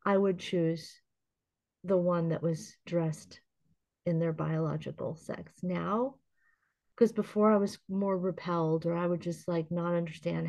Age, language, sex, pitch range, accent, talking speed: 30-49, English, female, 165-195 Hz, American, 150 wpm